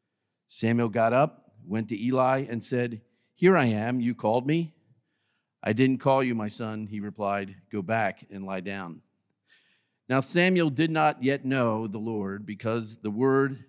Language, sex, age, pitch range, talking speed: English, male, 50-69, 110-135 Hz, 165 wpm